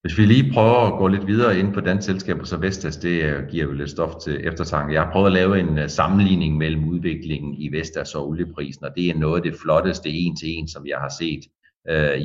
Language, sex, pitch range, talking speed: Danish, male, 75-90 Hz, 240 wpm